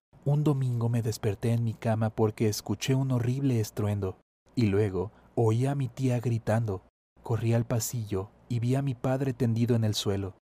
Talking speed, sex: 175 wpm, male